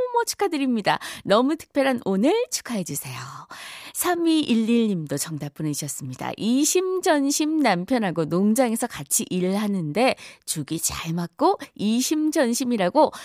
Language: Korean